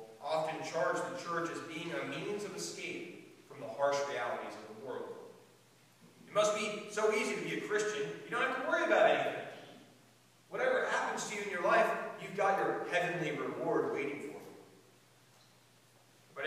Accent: American